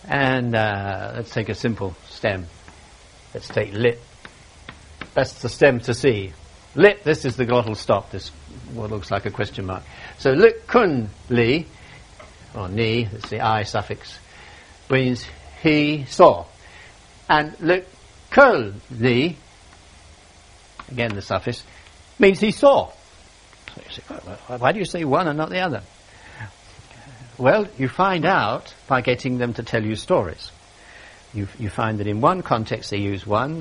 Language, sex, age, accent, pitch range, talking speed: Danish, male, 60-79, British, 100-150 Hz, 145 wpm